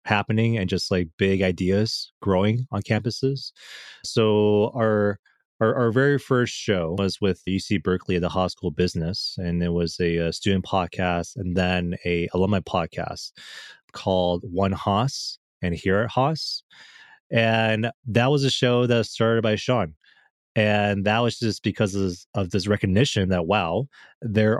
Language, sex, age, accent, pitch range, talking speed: English, male, 20-39, American, 90-115 Hz, 160 wpm